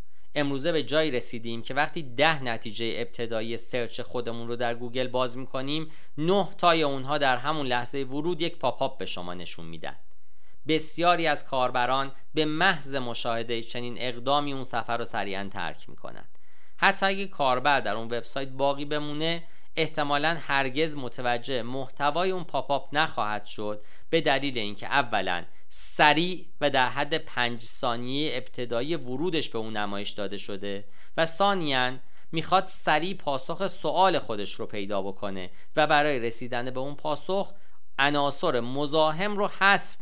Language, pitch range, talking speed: Persian, 115-155 Hz, 145 wpm